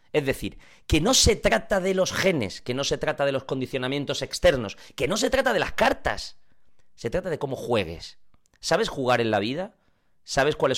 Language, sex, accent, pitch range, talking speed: Spanish, male, Spanish, 115-140 Hz, 200 wpm